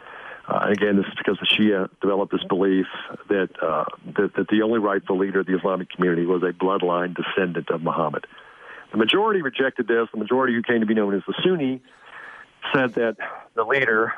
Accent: American